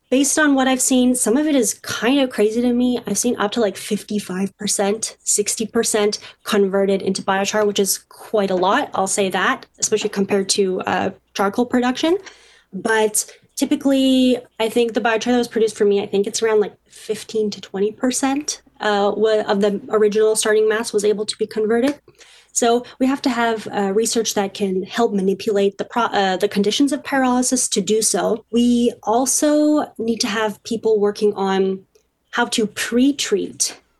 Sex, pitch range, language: female, 200-240 Hz, English